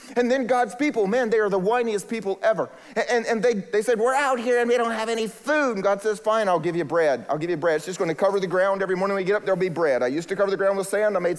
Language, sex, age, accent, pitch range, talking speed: English, male, 30-49, American, 185-240 Hz, 330 wpm